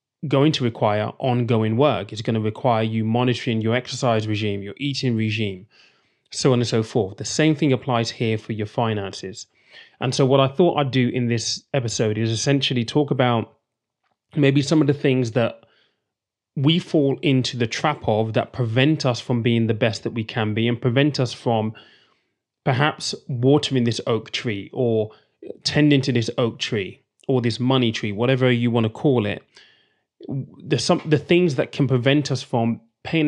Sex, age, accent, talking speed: male, 30-49, British, 185 wpm